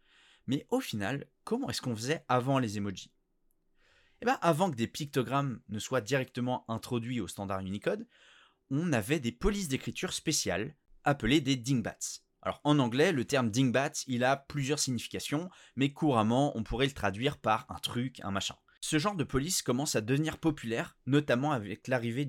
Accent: French